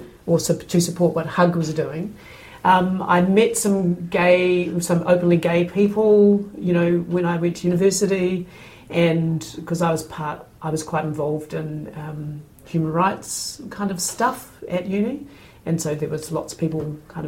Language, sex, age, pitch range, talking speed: English, female, 40-59, 155-175 Hz, 170 wpm